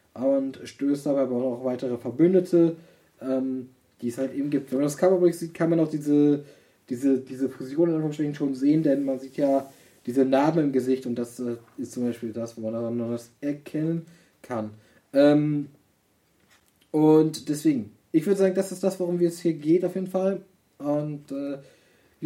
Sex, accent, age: male, German, 20-39